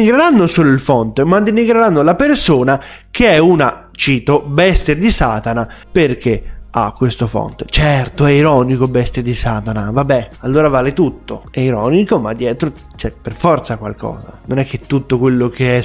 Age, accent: 20-39, native